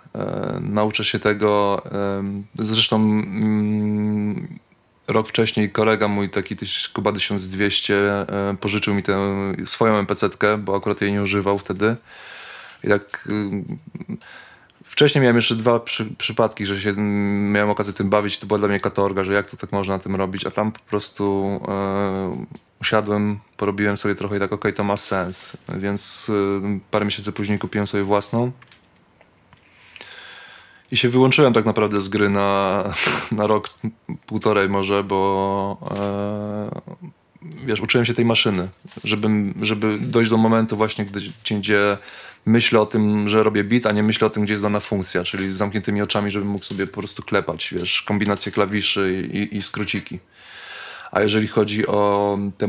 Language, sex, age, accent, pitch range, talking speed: Polish, male, 20-39, native, 100-105 Hz, 155 wpm